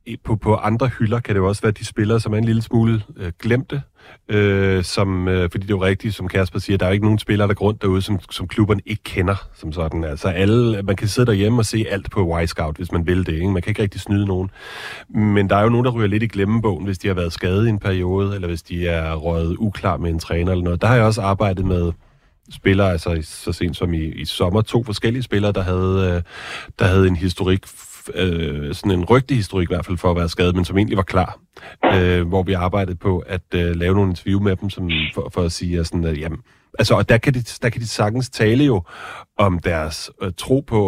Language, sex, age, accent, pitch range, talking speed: Danish, male, 30-49, native, 90-110 Hz, 255 wpm